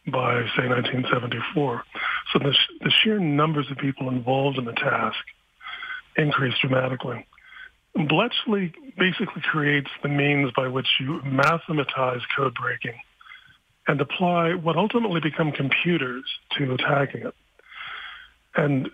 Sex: male